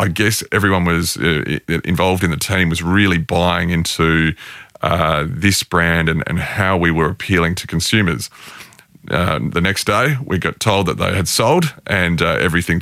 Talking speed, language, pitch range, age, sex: 175 wpm, English, 85-100 Hz, 30-49, male